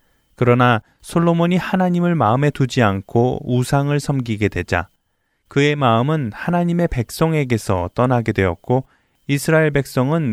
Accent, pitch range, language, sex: native, 105-155 Hz, Korean, male